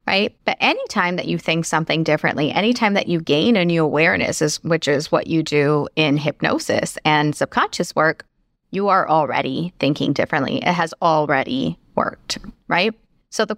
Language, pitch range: English, 150-185 Hz